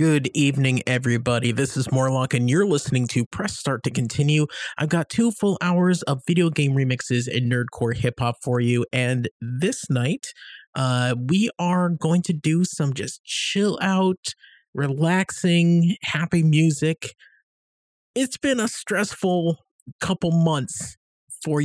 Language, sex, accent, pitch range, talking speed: English, male, American, 130-170 Hz, 140 wpm